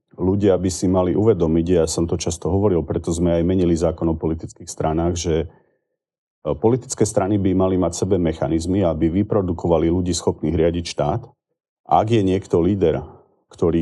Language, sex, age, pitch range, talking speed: Slovak, male, 40-59, 85-95 Hz, 160 wpm